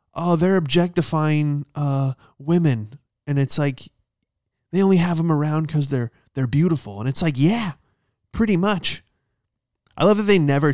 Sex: male